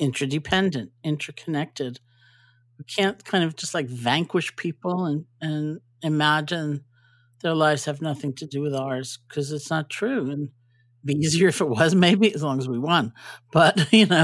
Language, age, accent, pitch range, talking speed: English, 50-69, American, 130-150 Hz, 175 wpm